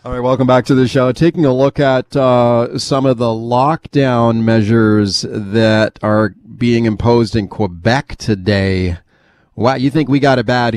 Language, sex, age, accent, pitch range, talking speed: English, male, 30-49, American, 110-125 Hz, 175 wpm